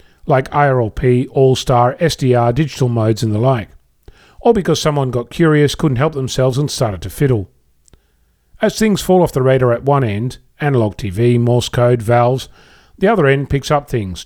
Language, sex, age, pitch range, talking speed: English, male, 40-59, 115-140 Hz, 175 wpm